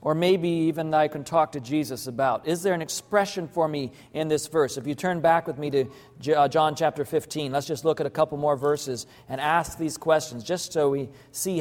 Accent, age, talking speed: American, 40-59, 225 wpm